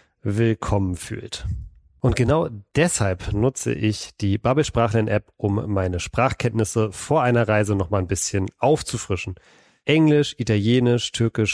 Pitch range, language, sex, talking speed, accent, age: 105-120 Hz, German, male, 125 wpm, German, 40-59